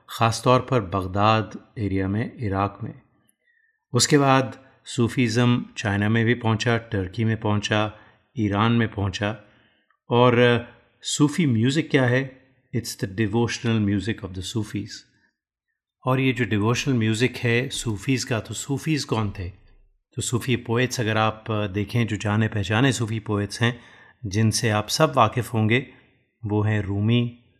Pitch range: 105-125 Hz